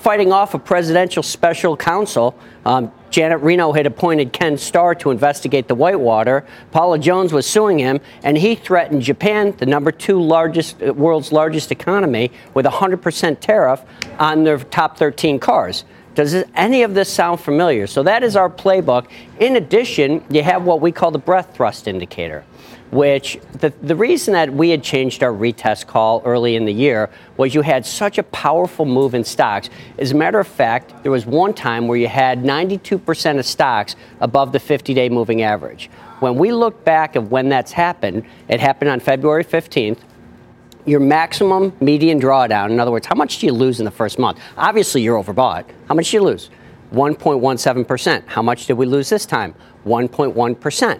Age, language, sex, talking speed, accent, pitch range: 50-69, English, male, 180 wpm, American, 130-175 Hz